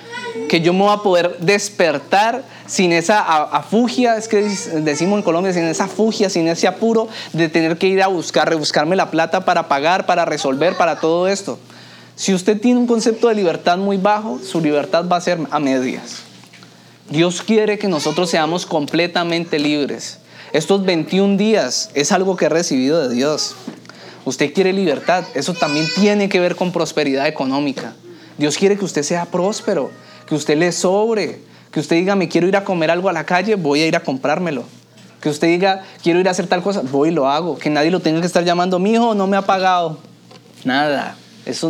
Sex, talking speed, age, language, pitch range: male, 195 wpm, 20-39, Spanish, 150-190 Hz